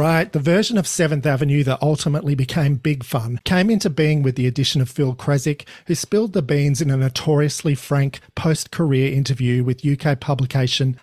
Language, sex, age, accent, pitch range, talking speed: English, male, 40-59, Australian, 130-160 Hz, 180 wpm